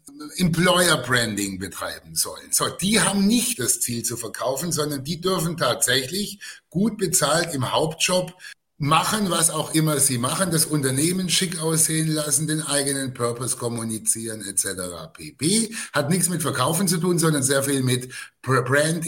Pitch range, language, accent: 130-165 Hz, German, German